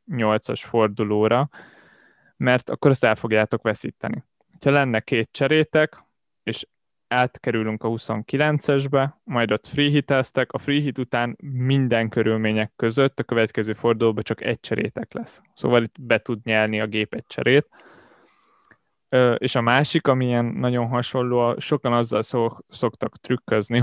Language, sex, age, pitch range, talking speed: Hungarian, male, 20-39, 110-130 Hz, 135 wpm